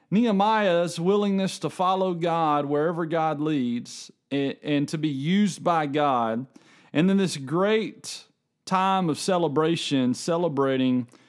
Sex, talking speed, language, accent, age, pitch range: male, 120 wpm, English, American, 40-59, 140-180 Hz